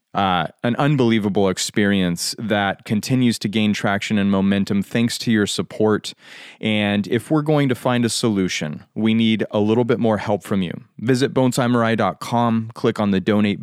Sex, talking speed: male, 165 wpm